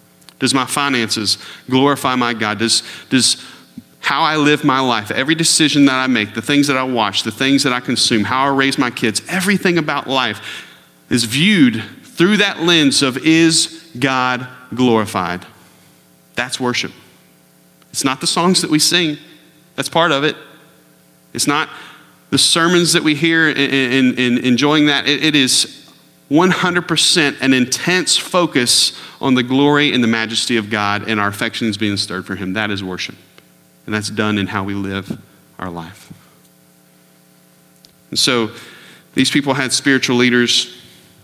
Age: 40-59